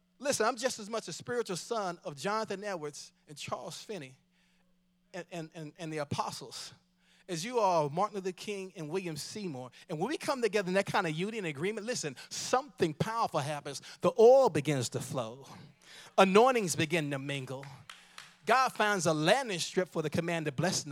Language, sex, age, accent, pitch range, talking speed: English, male, 30-49, American, 165-210 Hz, 175 wpm